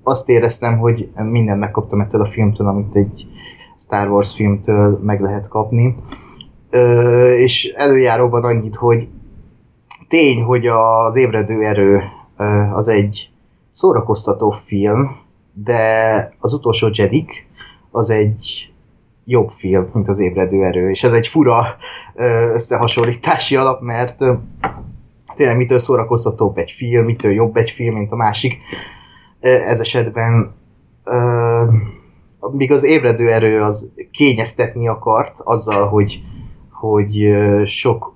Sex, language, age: male, Hungarian, 20-39